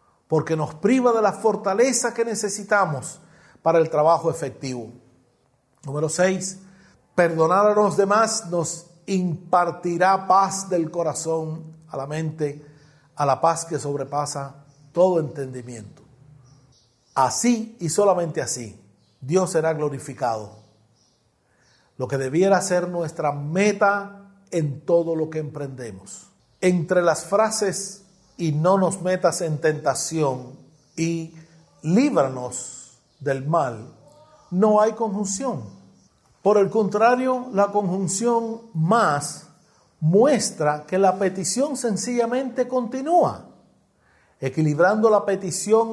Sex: male